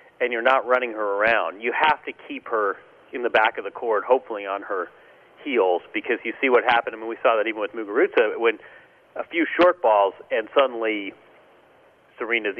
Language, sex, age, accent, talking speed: English, male, 40-59, American, 200 wpm